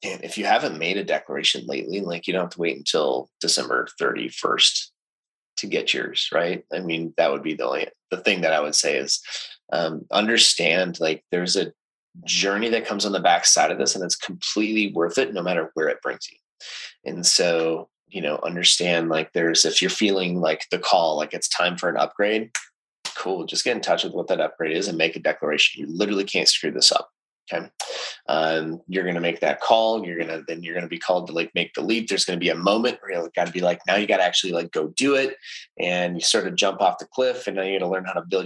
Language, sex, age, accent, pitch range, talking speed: English, male, 20-39, American, 85-105 Hz, 245 wpm